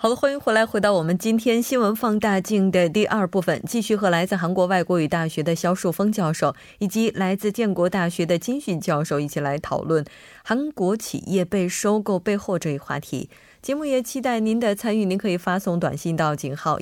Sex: female